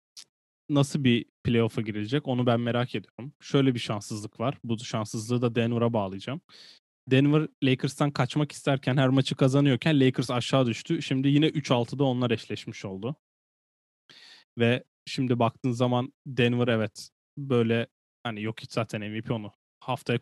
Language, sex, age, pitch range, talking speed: Turkish, male, 10-29, 115-140 Hz, 135 wpm